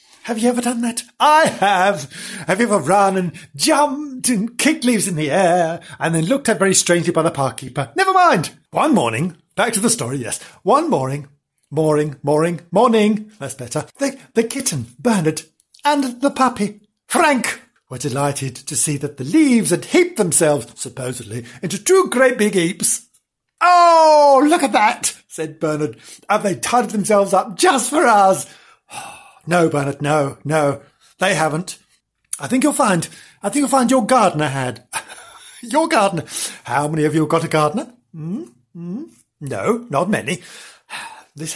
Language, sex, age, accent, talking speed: English, male, 50-69, British, 165 wpm